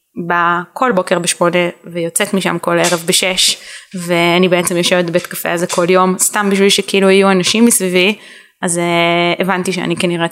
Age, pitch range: 20-39, 175-195 Hz